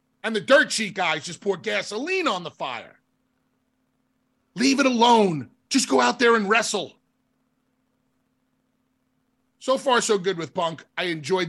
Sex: male